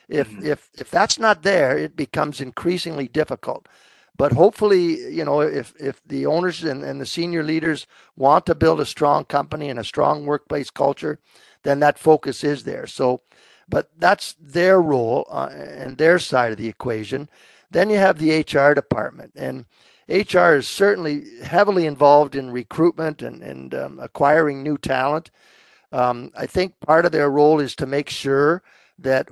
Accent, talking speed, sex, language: American, 170 wpm, male, English